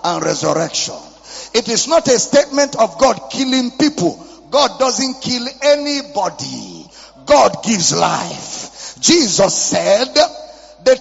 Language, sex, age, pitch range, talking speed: English, male, 50-69, 255-310 Hz, 110 wpm